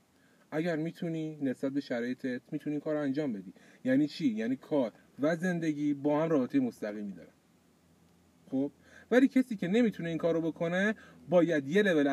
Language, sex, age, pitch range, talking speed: Persian, male, 30-49, 145-220 Hz, 165 wpm